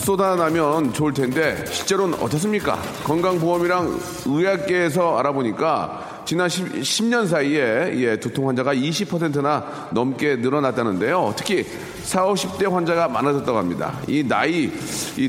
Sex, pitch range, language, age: male, 135-190 Hz, Korean, 40-59